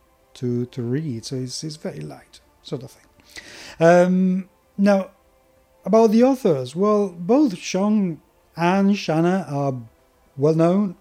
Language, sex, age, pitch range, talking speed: English, male, 30-49, 125-185 Hz, 125 wpm